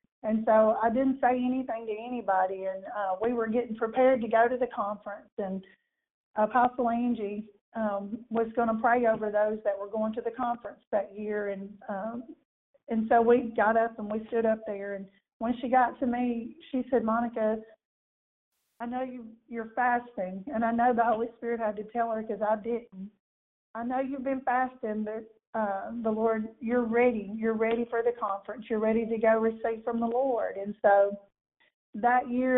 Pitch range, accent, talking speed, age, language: 215-240 Hz, American, 190 wpm, 40-59, English